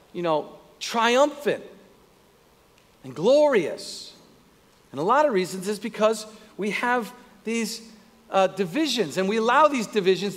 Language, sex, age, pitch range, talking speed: English, male, 50-69, 210-275 Hz, 125 wpm